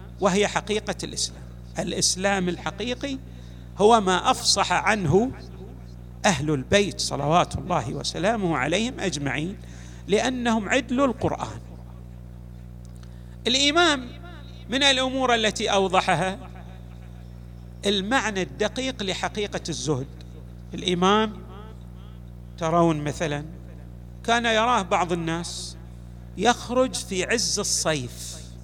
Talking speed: 80 wpm